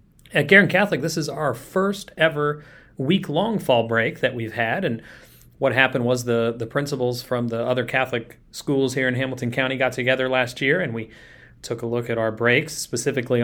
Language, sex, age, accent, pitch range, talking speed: English, male, 30-49, American, 115-130 Hz, 190 wpm